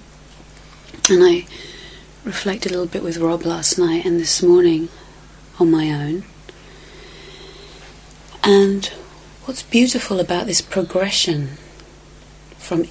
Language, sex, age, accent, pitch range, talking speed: English, female, 30-49, British, 165-200 Hz, 105 wpm